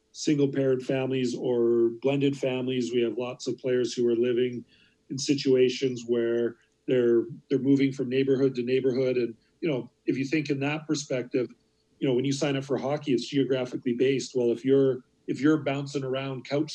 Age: 40-59